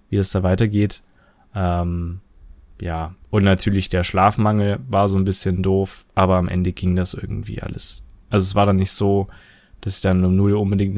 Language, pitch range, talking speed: German, 95-110 Hz, 185 wpm